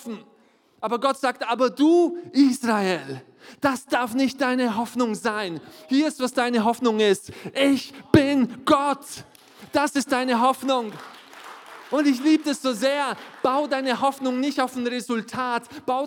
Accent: German